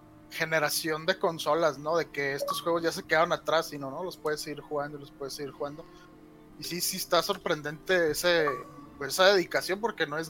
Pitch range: 150-175 Hz